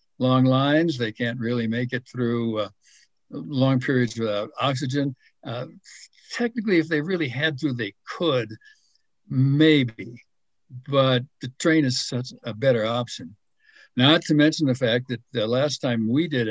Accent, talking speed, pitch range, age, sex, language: American, 155 wpm, 115-150 Hz, 60-79, male, English